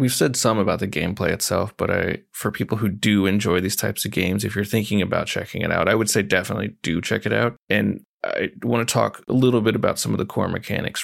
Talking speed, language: 255 wpm, English